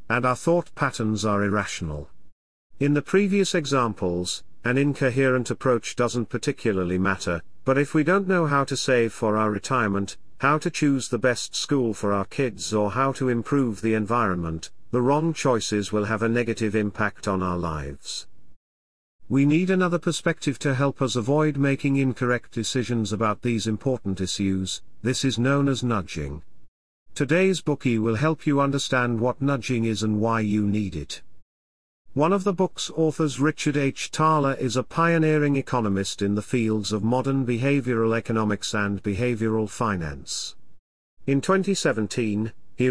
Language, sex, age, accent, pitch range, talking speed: Spanish, male, 50-69, British, 105-140 Hz, 155 wpm